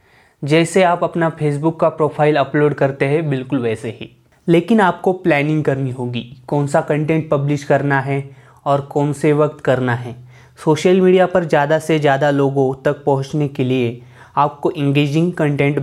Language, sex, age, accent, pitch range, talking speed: Hindi, male, 20-39, native, 130-155 Hz, 165 wpm